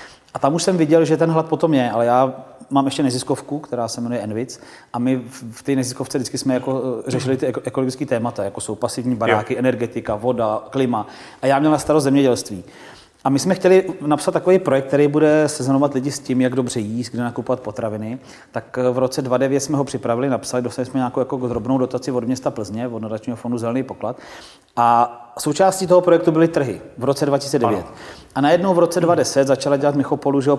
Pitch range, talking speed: 120-135 Hz, 205 wpm